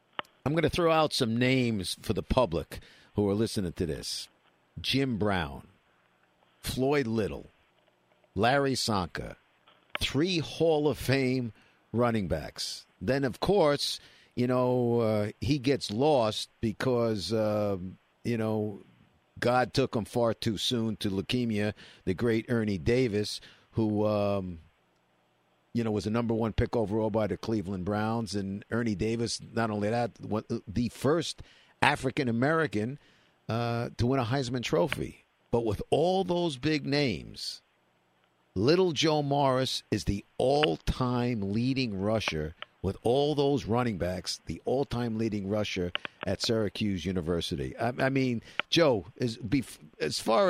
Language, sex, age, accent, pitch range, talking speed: English, male, 50-69, American, 100-130 Hz, 140 wpm